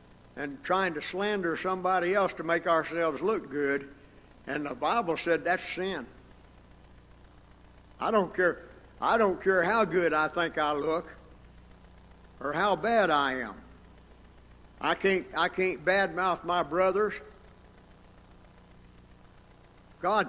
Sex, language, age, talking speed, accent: male, English, 60-79, 125 wpm, American